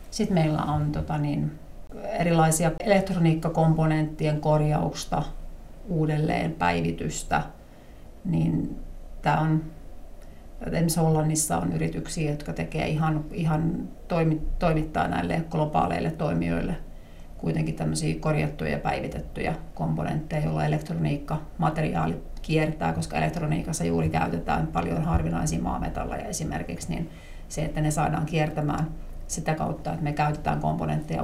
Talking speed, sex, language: 100 wpm, female, Finnish